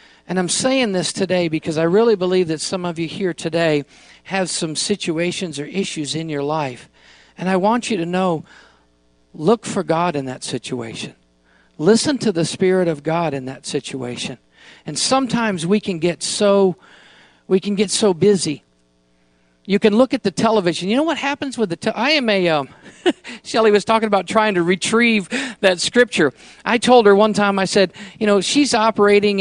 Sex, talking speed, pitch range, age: male, 190 wpm, 175-235 Hz, 50-69